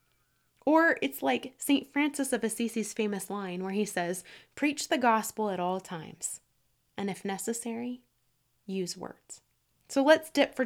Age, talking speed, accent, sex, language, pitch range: 20-39, 150 wpm, American, female, English, 185-240 Hz